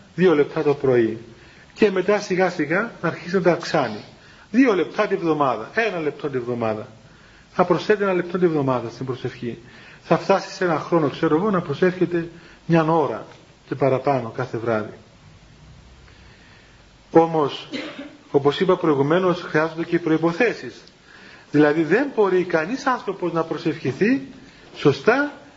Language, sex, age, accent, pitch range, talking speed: Greek, male, 40-59, native, 155-210 Hz, 140 wpm